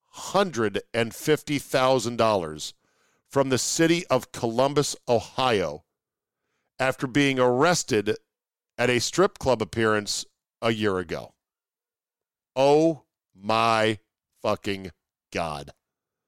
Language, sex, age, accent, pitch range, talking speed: English, male, 50-69, American, 110-140 Hz, 75 wpm